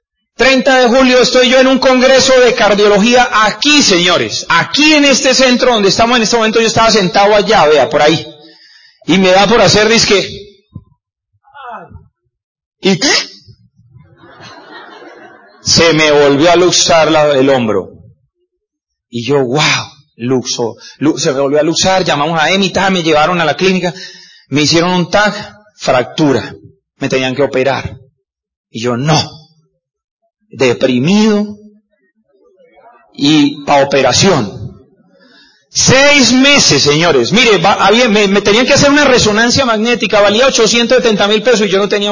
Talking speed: 140 wpm